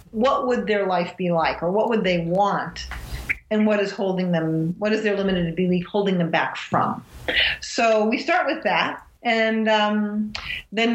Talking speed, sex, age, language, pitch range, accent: 180 wpm, female, 40-59, English, 200-235 Hz, American